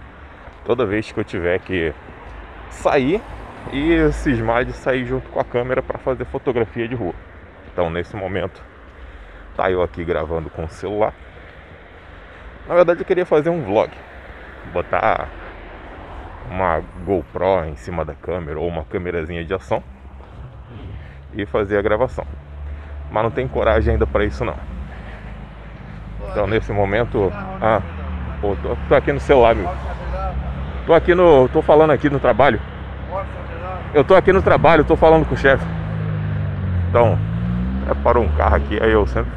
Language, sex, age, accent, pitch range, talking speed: Portuguese, male, 20-39, Brazilian, 75-110 Hz, 145 wpm